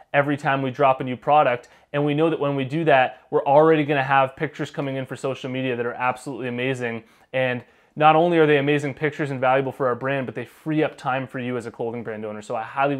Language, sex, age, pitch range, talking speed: English, male, 20-39, 130-155 Hz, 265 wpm